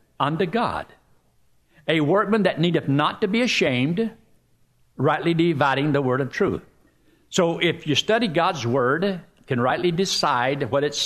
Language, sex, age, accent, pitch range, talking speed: English, male, 60-79, American, 140-190 Hz, 145 wpm